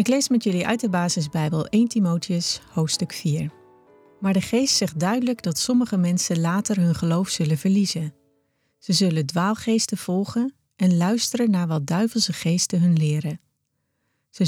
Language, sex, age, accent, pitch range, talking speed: Dutch, female, 40-59, Dutch, 160-205 Hz, 155 wpm